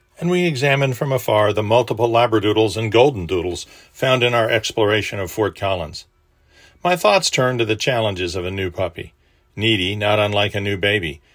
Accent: American